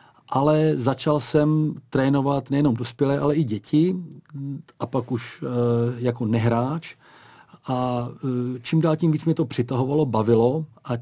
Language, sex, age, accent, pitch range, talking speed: Czech, male, 40-59, native, 125-150 Hz, 130 wpm